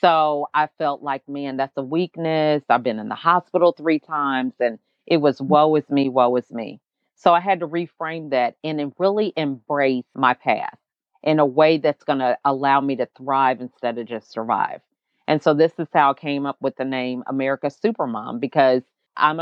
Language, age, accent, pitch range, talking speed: English, 40-59, American, 135-160 Hz, 200 wpm